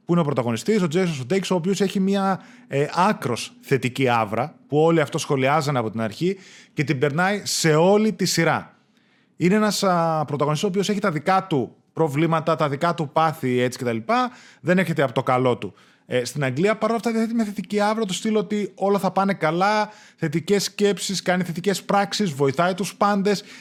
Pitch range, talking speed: 150-205 Hz, 195 wpm